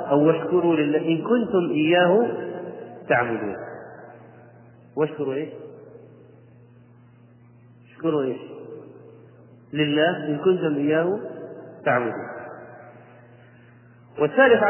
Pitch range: 135-180 Hz